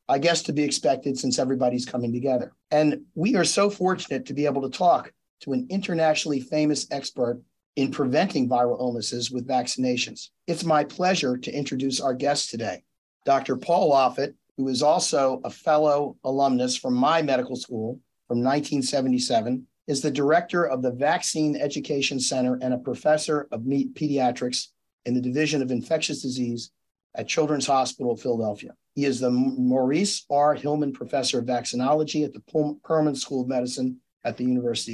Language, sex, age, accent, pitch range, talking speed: English, male, 40-59, American, 125-150 Hz, 160 wpm